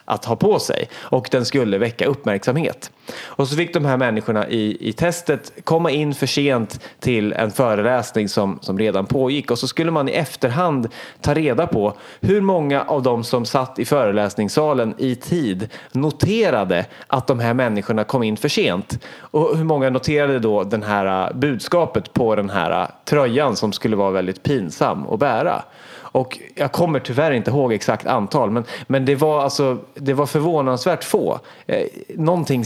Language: Swedish